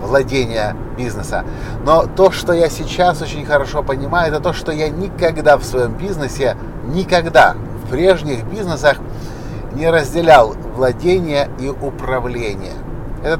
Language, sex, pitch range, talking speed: Russian, male, 130-165 Hz, 125 wpm